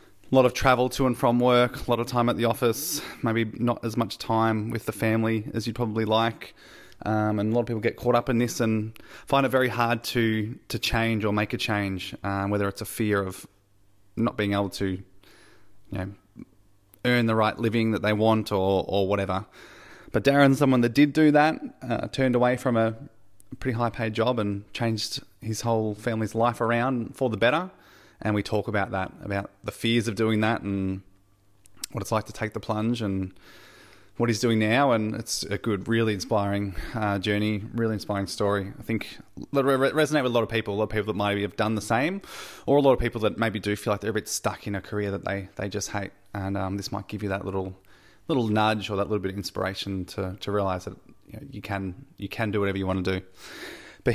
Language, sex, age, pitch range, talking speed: English, male, 20-39, 100-120 Hz, 230 wpm